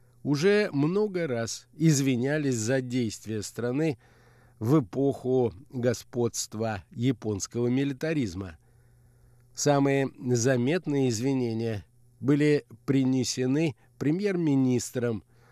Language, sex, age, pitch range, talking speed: Russian, male, 50-69, 120-145 Hz, 70 wpm